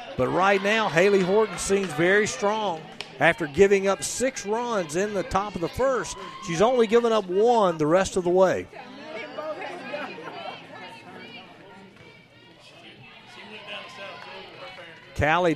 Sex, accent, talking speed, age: male, American, 115 wpm, 50-69